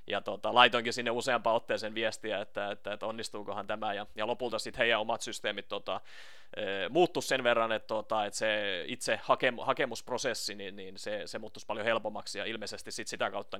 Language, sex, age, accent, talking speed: Finnish, male, 30-49, native, 190 wpm